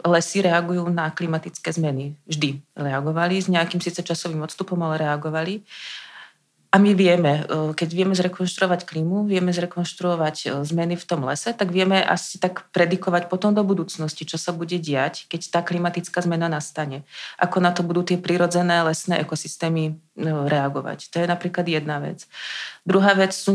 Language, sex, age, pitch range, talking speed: Czech, female, 30-49, 160-195 Hz, 155 wpm